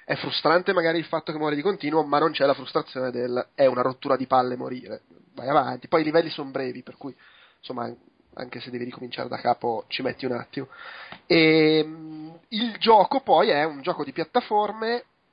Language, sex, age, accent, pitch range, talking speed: Italian, male, 20-39, native, 135-170 Hz, 195 wpm